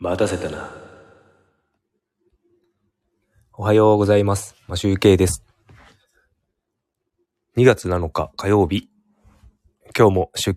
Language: Japanese